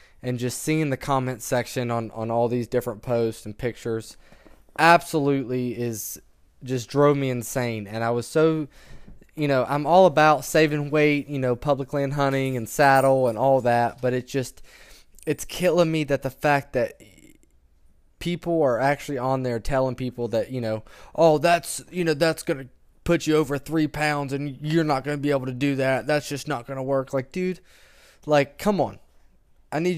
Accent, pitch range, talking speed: American, 120-145 Hz, 190 wpm